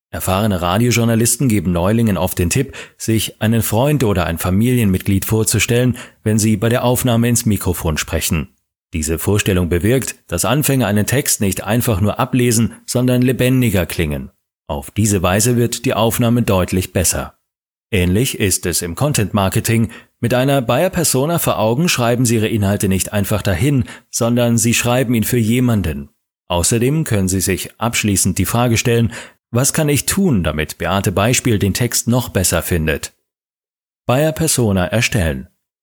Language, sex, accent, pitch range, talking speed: German, male, German, 95-120 Hz, 150 wpm